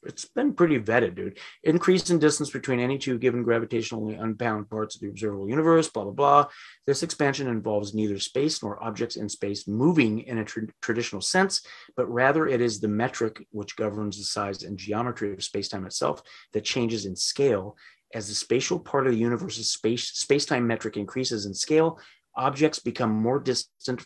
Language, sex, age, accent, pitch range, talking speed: English, male, 30-49, American, 110-135 Hz, 175 wpm